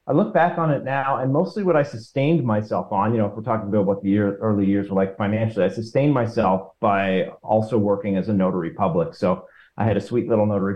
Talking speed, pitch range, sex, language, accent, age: 245 wpm, 100-115 Hz, male, English, American, 30-49